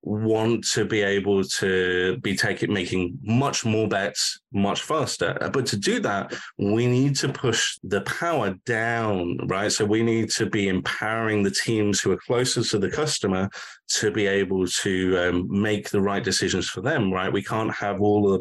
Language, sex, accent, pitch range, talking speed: English, male, British, 95-115 Hz, 185 wpm